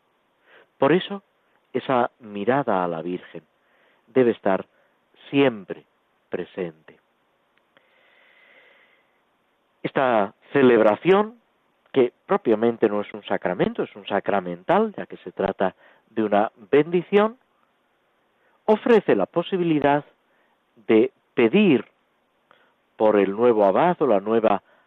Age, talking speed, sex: 50-69, 100 wpm, male